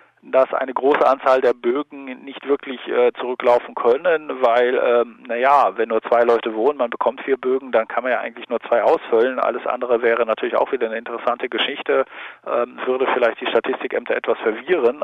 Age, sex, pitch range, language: 40-59, male, 120-150 Hz, German